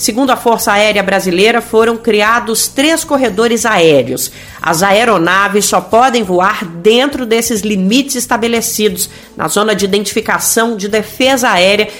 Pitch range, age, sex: 195-235 Hz, 40-59, female